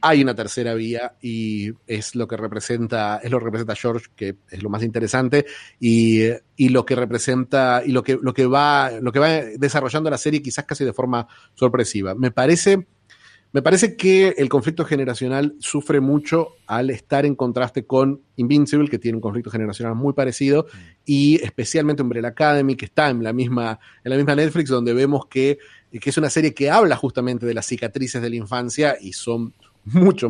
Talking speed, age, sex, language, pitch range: 190 wpm, 30-49, male, Spanish, 120-145 Hz